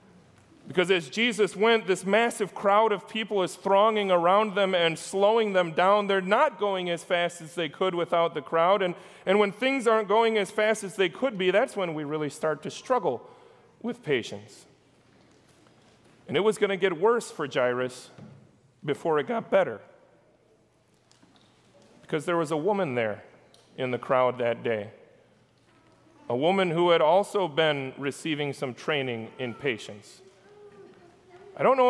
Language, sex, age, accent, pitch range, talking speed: English, male, 30-49, American, 170-225 Hz, 165 wpm